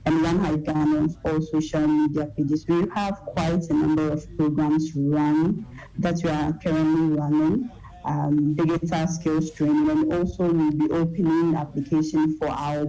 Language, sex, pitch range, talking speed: English, female, 150-165 Hz, 155 wpm